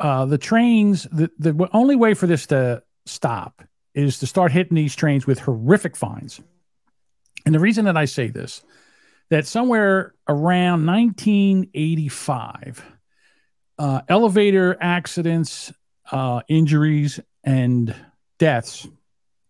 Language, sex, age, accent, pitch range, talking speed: English, male, 50-69, American, 135-180 Hz, 115 wpm